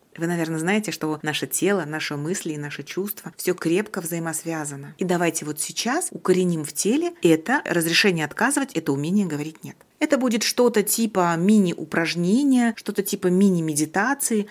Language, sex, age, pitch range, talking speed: Russian, female, 30-49, 160-210 Hz, 150 wpm